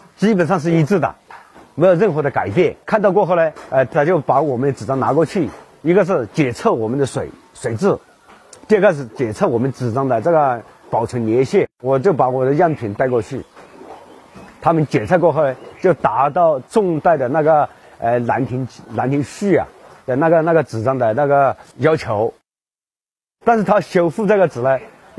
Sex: male